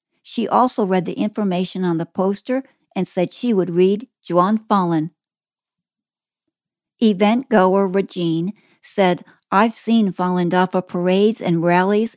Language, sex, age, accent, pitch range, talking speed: English, female, 60-79, American, 180-215 Hz, 125 wpm